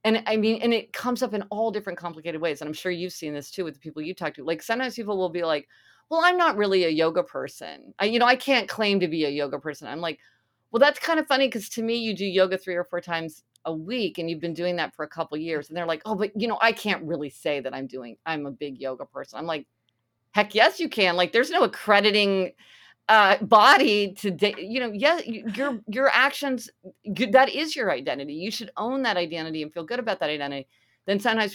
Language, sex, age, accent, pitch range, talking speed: English, female, 40-59, American, 160-220 Hz, 255 wpm